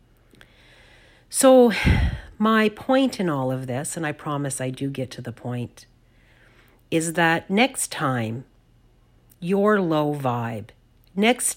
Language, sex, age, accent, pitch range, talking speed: English, female, 50-69, American, 120-160 Hz, 125 wpm